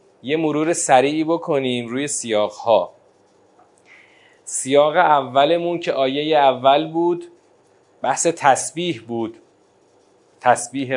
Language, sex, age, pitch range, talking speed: Persian, male, 30-49, 130-170 Hz, 90 wpm